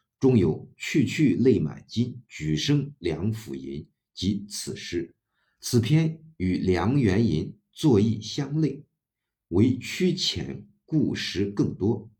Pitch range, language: 95-130 Hz, Chinese